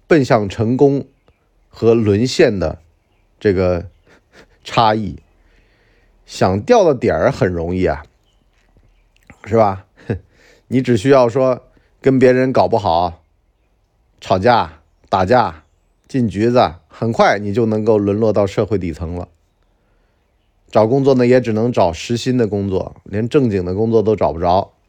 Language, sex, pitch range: Chinese, male, 95-125 Hz